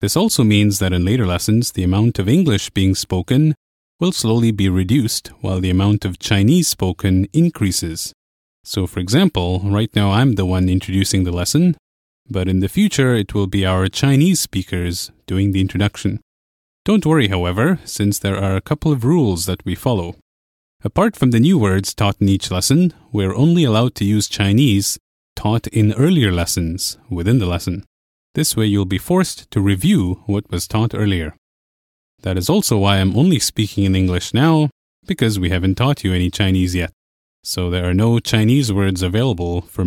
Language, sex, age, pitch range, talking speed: English, male, 30-49, 90-115 Hz, 180 wpm